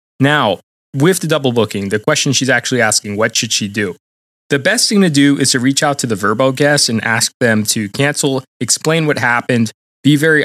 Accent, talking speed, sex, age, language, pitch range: American, 210 wpm, male, 20-39, English, 120-145 Hz